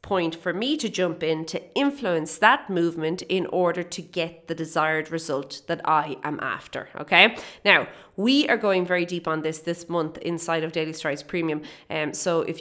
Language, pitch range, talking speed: English, 165-225 Hz, 190 wpm